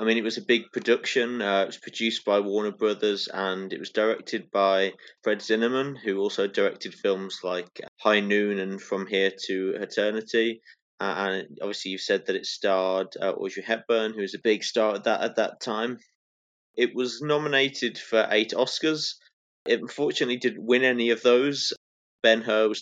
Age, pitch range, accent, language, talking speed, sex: 20-39, 100-115 Hz, British, English, 180 wpm, male